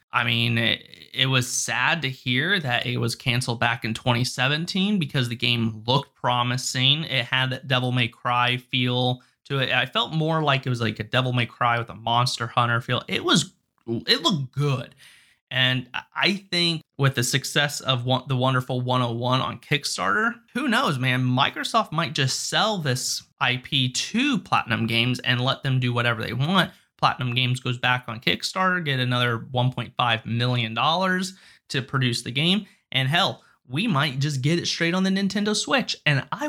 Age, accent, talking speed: 20-39, American, 180 wpm